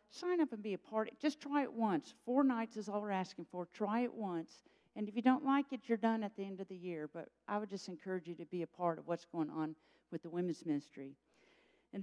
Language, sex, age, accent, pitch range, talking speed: English, female, 50-69, American, 195-270 Hz, 275 wpm